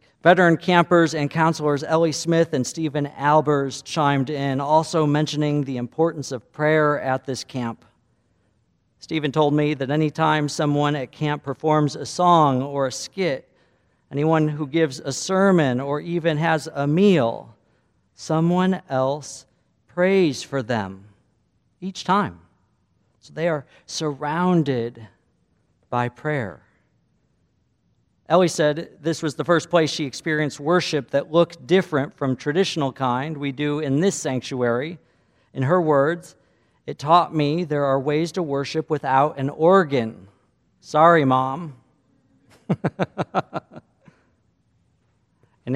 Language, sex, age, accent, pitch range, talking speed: English, male, 50-69, American, 125-155 Hz, 125 wpm